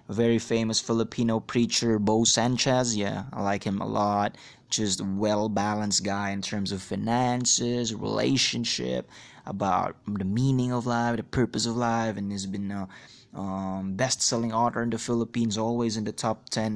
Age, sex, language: 20-39, male, English